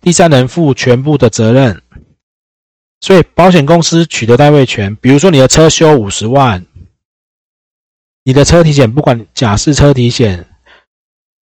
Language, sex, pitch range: Chinese, male, 100-145 Hz